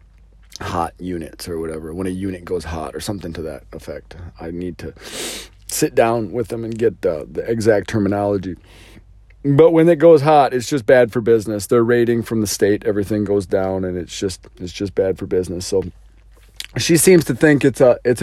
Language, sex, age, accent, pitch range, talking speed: English, male, 40-59, American, 95-120 Hz, 200 wpm